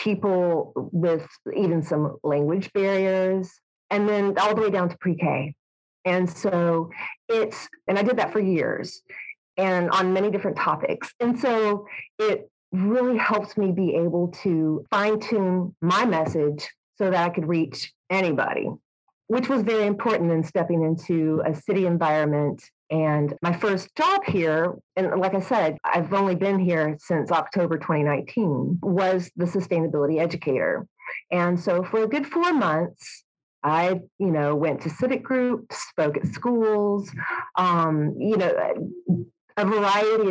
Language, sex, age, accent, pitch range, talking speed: English, female, 40-59, American, 165-205 Hz, 145 wpm